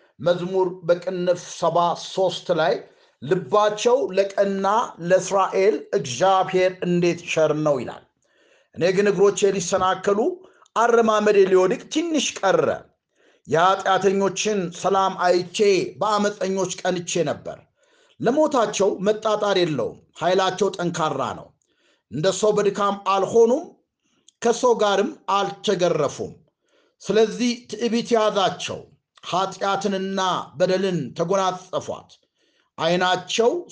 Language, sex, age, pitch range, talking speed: Amharic, male, 50-69, 185-225 Hz, 80 wpm